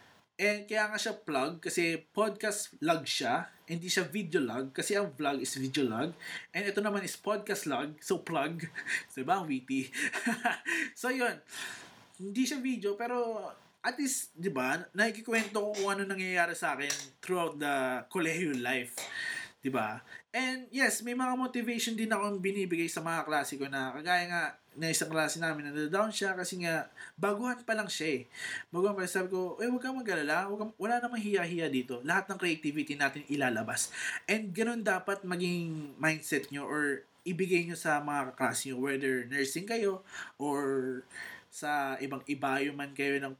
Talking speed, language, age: 170 wpm, Filipino, 20-39